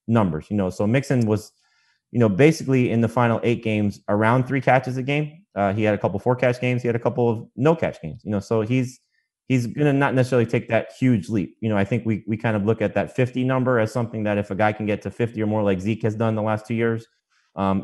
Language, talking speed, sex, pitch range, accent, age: English, 275 wpm, male, 105-130 Hz, American, 30-49